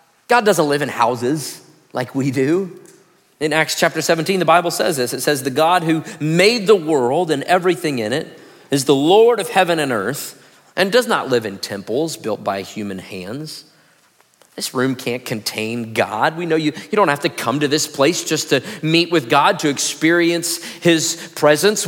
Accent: American